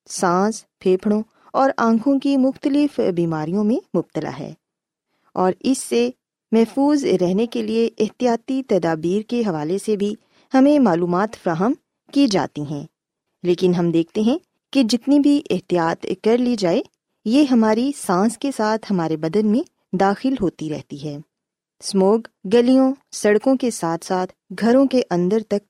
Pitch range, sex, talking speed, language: 180-245 Hz, female, 145 wpm, Urdu